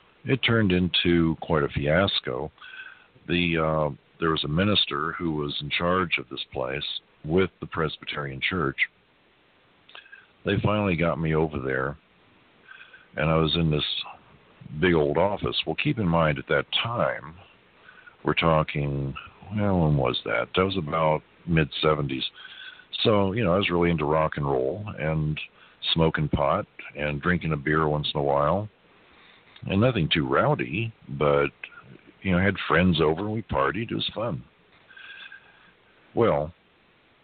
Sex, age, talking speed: male, 50-69, 150 wpm